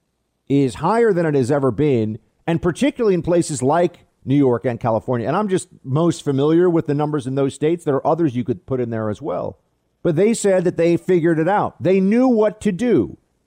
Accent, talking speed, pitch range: American, 225 wpm, 125-200 Hz